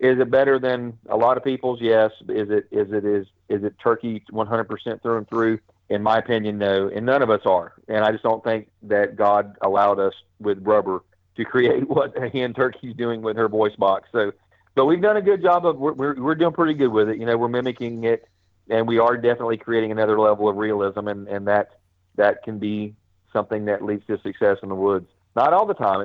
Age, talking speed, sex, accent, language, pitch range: 40-59, 230 wpm, male, American, English, 105-125 Hz